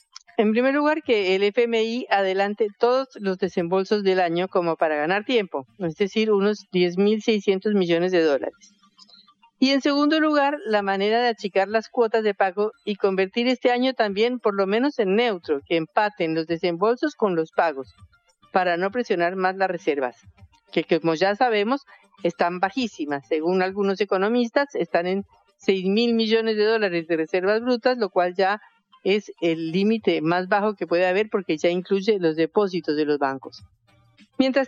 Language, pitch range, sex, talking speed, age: Spanish, 180-230 Hz, female, 165 wpm, 50-69